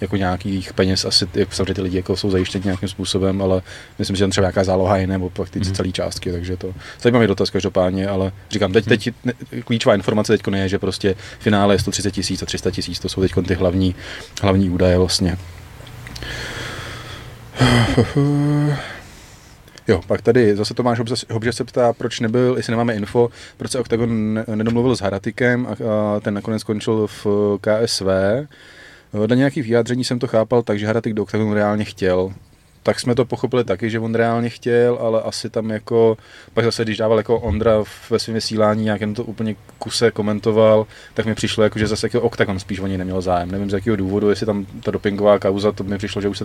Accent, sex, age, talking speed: native, male, 30-49, 195 wpm